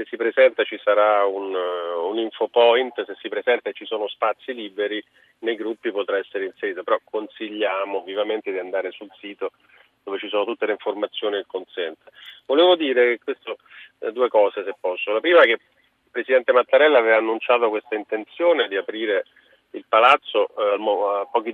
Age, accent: 40-59, native